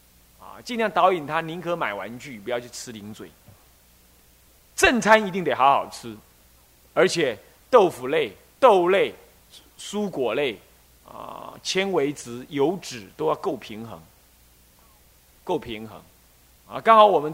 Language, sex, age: Chinese, male, 30-49